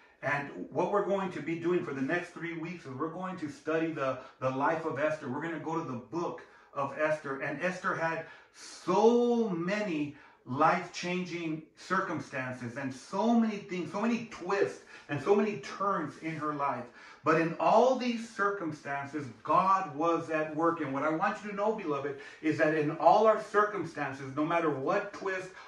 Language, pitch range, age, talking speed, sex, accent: English, 145-175 Hz, 40-59, 185 wpm, male, American